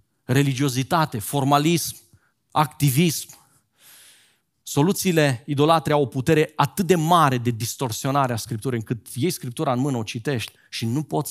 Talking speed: 135 wpm